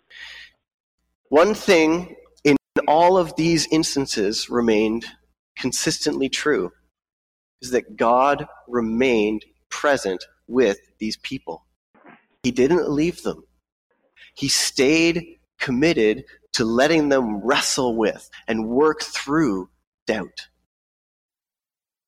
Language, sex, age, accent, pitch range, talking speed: English, male, 30-49, American, 115-170 Hz, 90 wpm